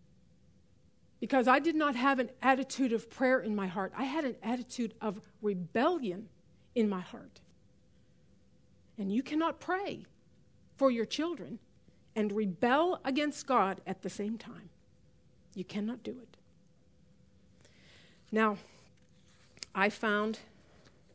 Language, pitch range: English, 205-255 Hz